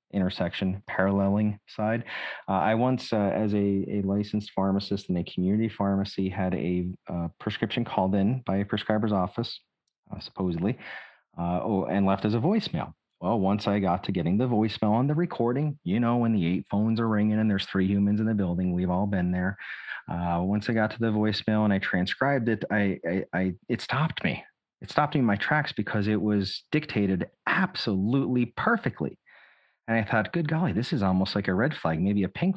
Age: 30-49